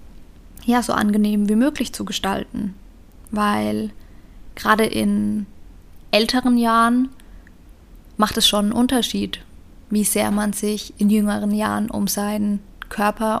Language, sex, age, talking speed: German, female, 20-39, 120 wpm